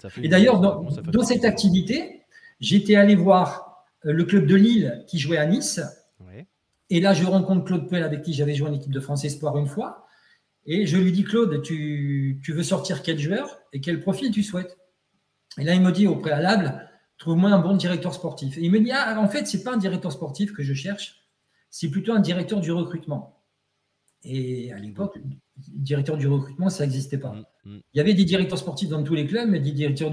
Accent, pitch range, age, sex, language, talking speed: French, 150-200 Hz, 50-69, male, French, 210 wpm